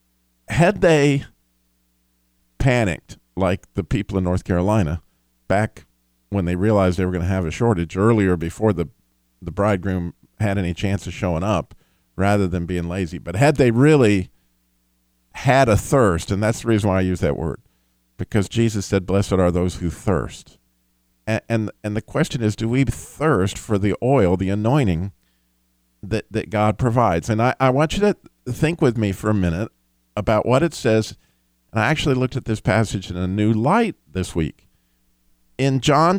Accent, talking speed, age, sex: American, 180 wpm, 50-69, male